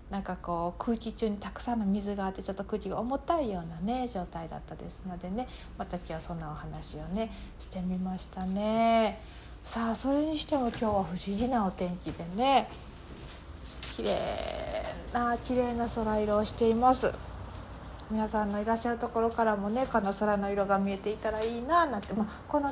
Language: Japanese